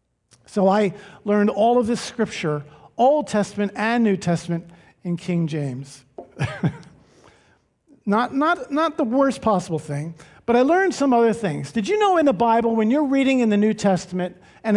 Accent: American